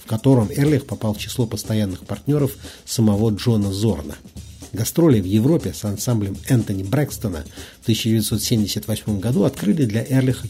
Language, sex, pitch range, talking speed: Russian, male, 105-135 Hz, 135 wpm